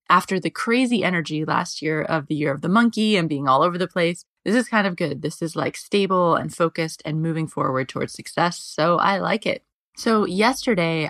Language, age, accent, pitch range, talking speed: English, 20-39, American, 160-200 Hz, 215 wpm